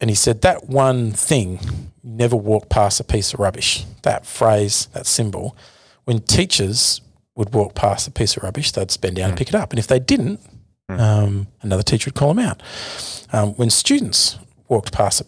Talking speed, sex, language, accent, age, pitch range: 195 wpm, male, English, Australian, 40-59, 100-130 Hz